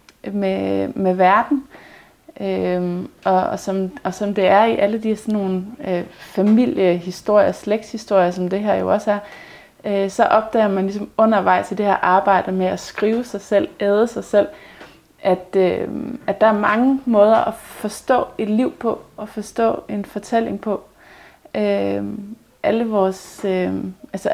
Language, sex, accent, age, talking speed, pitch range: Danish, female, native, 30-49, 160 wpm, 190-225 Hz